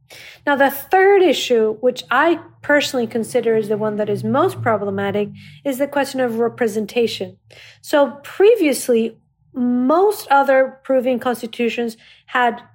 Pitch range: 220-275 Hz